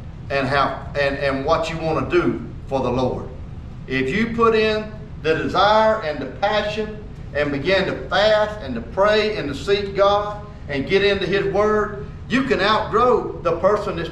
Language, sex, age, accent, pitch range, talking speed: English, male, 40-59, American, 170-210 Hz, 185 wpm